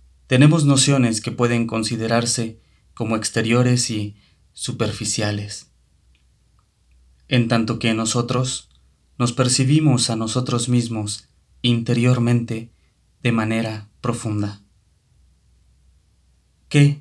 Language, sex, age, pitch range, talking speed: Spanish, male, 30-49, 90-125 Hz, 80 wpm